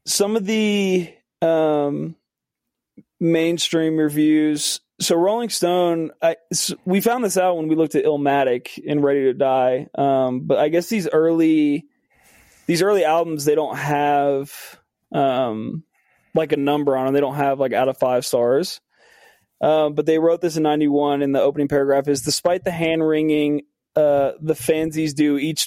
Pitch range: 140-160 Hz